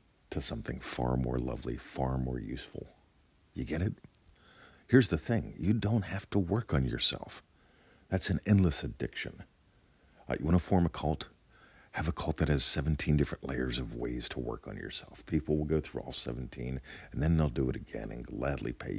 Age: 50-69